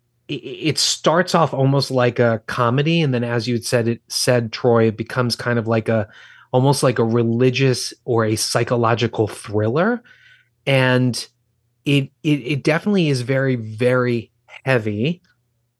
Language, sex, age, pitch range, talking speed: English, male, 30-49, 115-135 Hz, 150 wpm